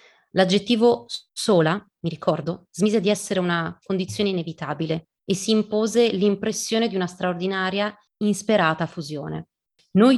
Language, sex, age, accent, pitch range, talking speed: Italian, female, 30-49, native, 165-205 Hz, 120 wpm